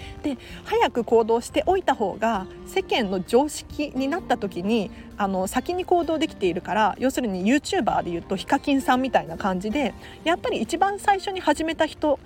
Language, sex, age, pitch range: Japanese, female, 40-59, 210-315 Hz